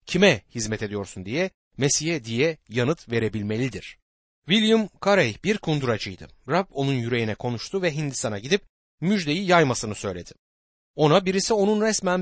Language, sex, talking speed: Turkish, male, 130 wpm